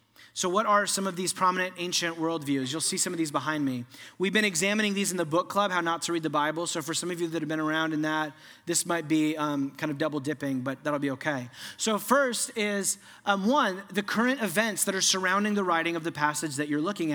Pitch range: 150-195 Hz